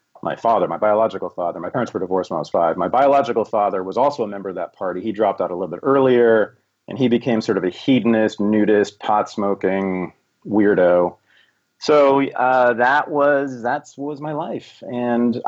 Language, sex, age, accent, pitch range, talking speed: English, male, 30-49, American, 100-135 Hz, 195 wpm